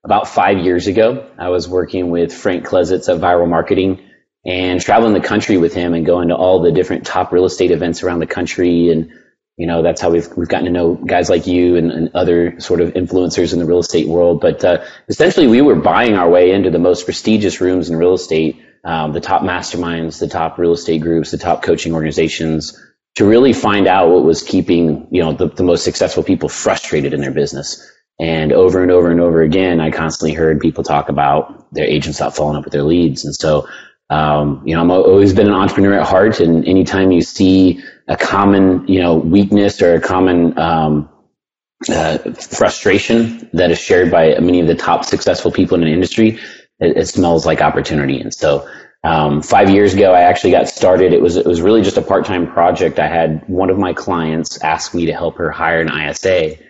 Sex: male